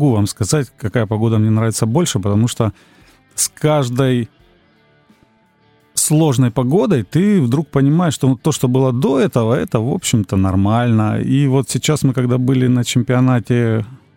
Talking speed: 145 wpm